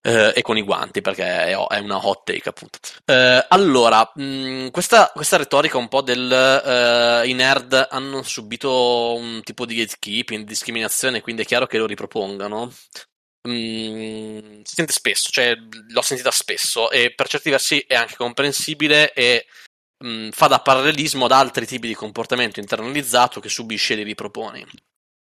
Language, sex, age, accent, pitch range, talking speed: Italian, male, 20-39, native, 115-135 Hz, 165 wpm